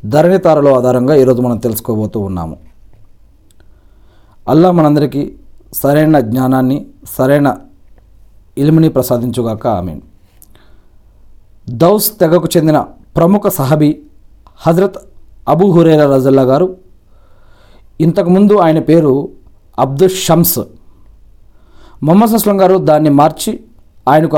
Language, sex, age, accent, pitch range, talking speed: Telugu, male, 40-59, native, 105-175 Hz, 85 wpm